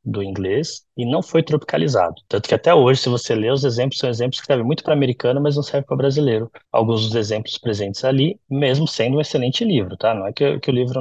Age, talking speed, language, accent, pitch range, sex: 20-39, 240 wpm, Portuguese, Brazilian, 115-145 Hz, male